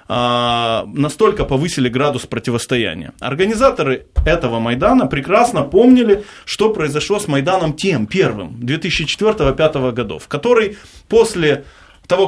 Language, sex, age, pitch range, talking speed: Russian, male, 20-39, 125-190 Hz, 100 wpm